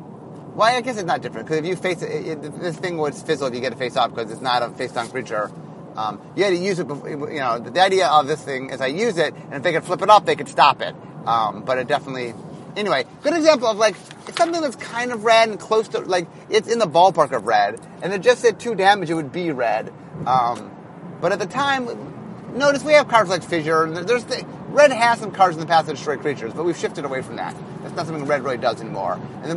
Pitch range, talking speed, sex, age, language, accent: 150-210 Hz, 270 wpm, male, 30-49, English, American